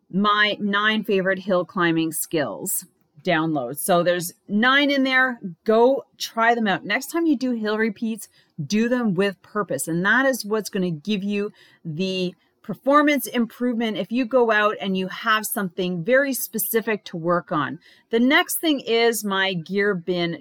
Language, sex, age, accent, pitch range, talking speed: English, female, 30-49, American, 185-235 Hz, 170 wpm